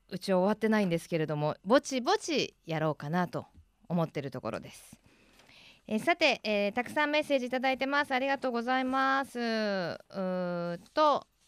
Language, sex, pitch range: Japanese, female, 185-270 Hz